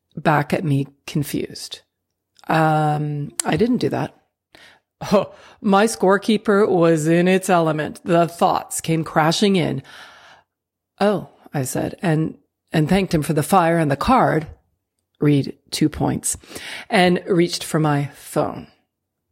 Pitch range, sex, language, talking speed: 150-195 Hz, female, English, 130 wpm